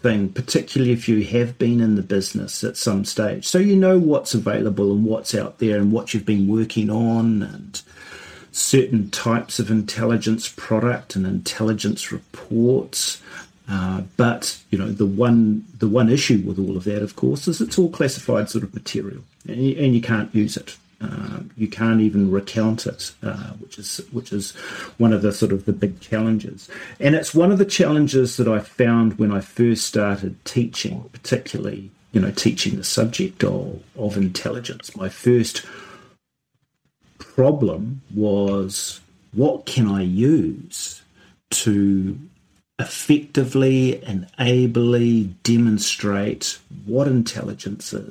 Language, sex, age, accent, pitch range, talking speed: English, male, 40-59, Australian, 100-125 Hz, 150 wpm